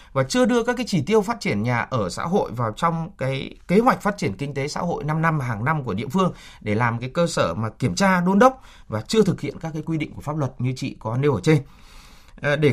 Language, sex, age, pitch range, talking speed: Vietnamese, male, 20-39, 130-180 Hz, 280 wpm